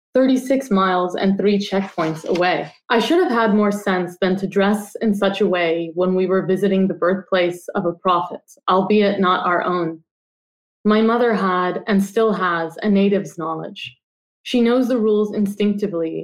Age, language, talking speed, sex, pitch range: 20-39, English, 170 wpm, female, 175-215 Hz